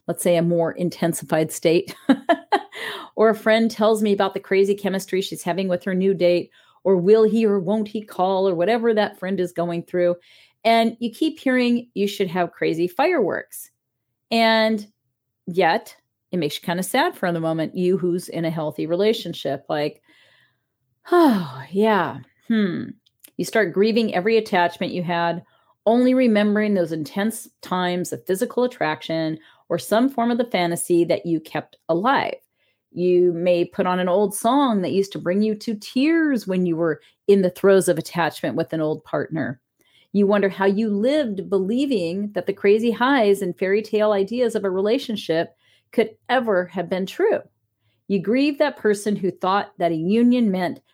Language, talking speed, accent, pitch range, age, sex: English, 175 wpm, American, 170-220 Hz, 40-59, female